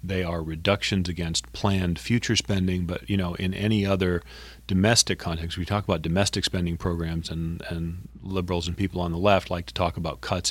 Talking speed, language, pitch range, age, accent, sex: 195 wpm, English, 85-100 Hz, 40-59, American, male